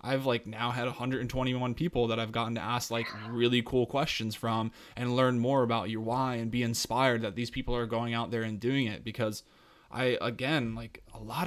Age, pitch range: 20-39, 115-125 Hz